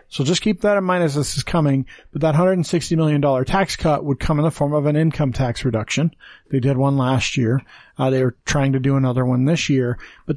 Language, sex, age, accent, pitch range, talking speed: English, male, 40-59, American, 125-160 Hz, 245 wpm